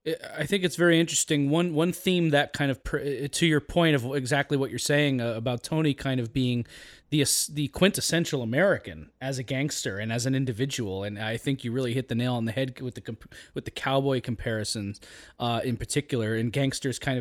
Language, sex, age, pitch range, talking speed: English, male, 20-39, 115-145 Hz, 200 wpm